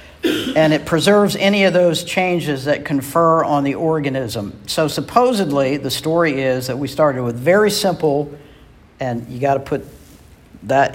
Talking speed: 160 wpm